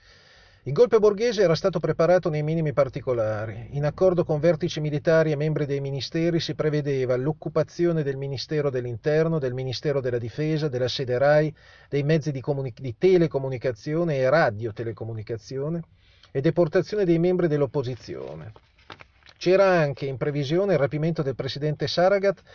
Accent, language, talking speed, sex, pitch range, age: native, Italian, 140 wpm, male, 125-170 Hz, 40-59